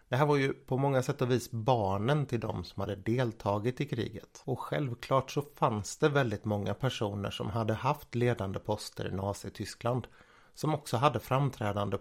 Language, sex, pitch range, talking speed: Swedish, male, 110-135 Hz, 180 wpm